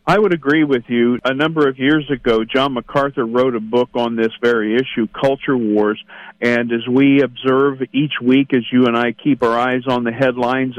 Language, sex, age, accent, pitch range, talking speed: English, male, 50-69, American, 120-135 Hz, 205 wpm